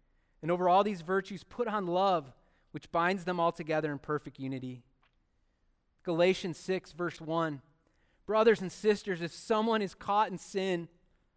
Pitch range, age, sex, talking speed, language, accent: 150-200 Hz, 30-49, male, 155 wpm, English, American